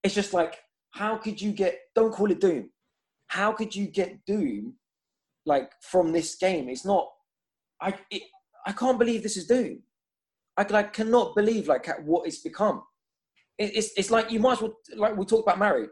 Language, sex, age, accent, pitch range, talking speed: English, male, 20-39, British, 180-255 Hz, 190 wpm